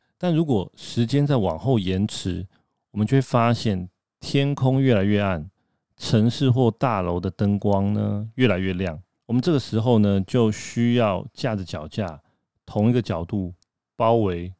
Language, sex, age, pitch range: Chinese, male, 30-49, 95-125 Hz